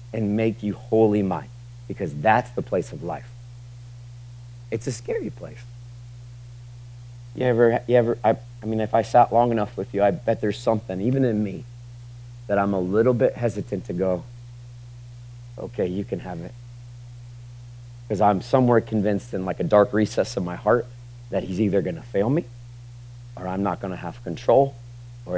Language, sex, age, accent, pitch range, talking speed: English, male, 40-59, American, 110-120 Hz, 180 wpm